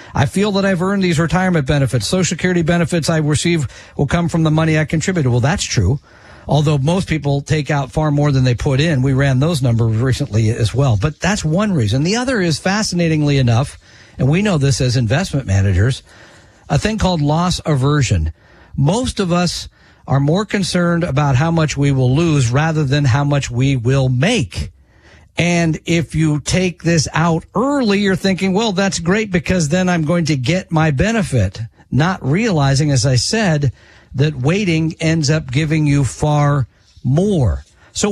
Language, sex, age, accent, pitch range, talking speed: English, male, 50-69, American, 135-175 Hz, 180 wpm